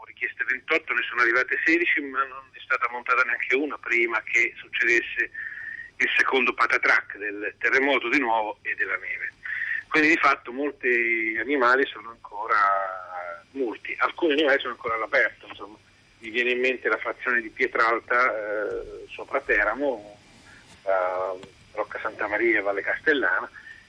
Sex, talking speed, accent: male, 145 wpm, native